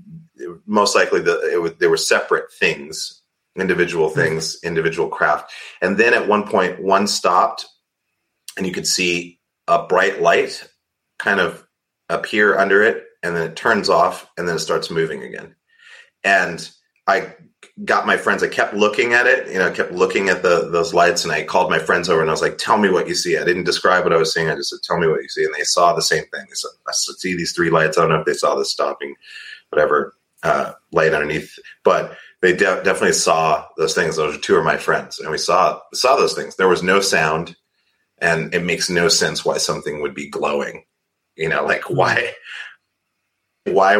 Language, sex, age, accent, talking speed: English, male, 30-49, American, 210 wpm